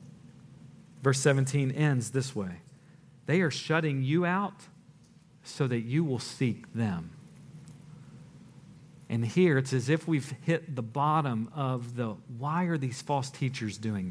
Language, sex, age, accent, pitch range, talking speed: English, male, 40-59, American, 145-205 Hz, 140 wpm